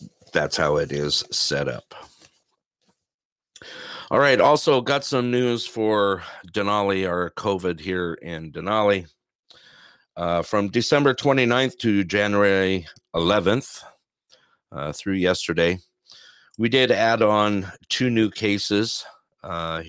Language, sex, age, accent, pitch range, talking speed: English, male, 50-69, American, 85-110 Hz, 110 wpm